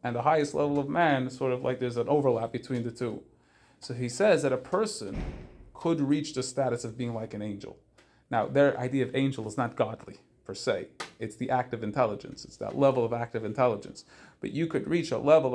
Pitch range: 115-135 Hz